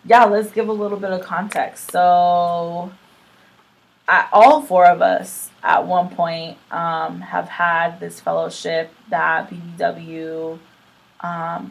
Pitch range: 165-195 Hz